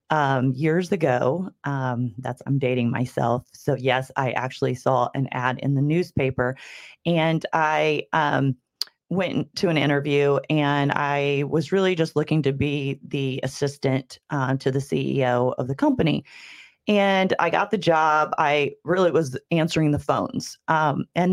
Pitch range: 140-175 Hz